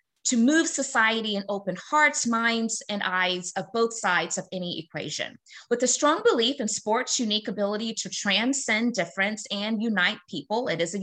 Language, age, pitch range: English, 20-39, 200-265 Hz